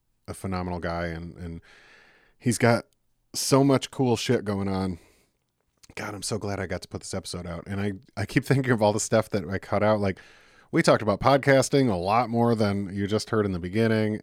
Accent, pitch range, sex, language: American, 90-115 Hz, male, English